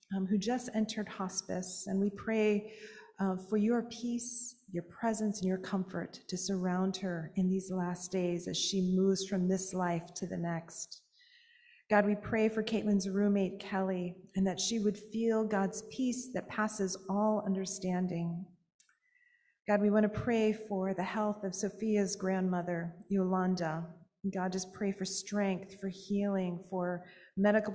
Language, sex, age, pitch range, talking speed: English, female, 40-59, 185-210 Hz, 155 wpm